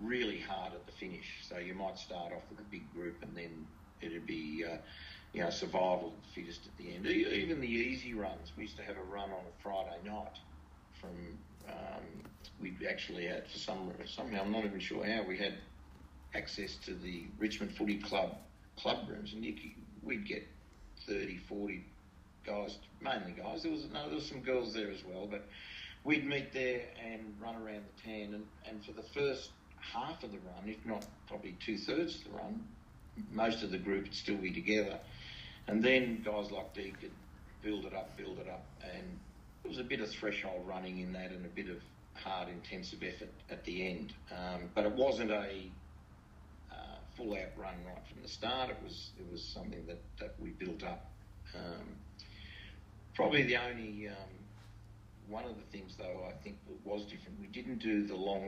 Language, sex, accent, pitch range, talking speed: English, male, Australian, 90-110 Hz, 200 wpm